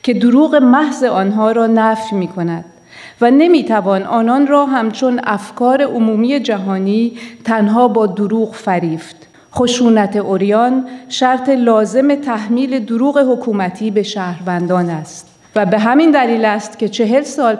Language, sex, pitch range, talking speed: Persian, female, 200-240 Hz, 125 wpm